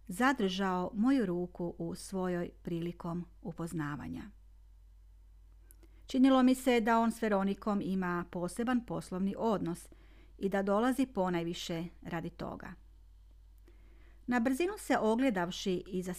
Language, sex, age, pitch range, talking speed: Croatian, female, 40-59, 170-225 Hz, 110 wpm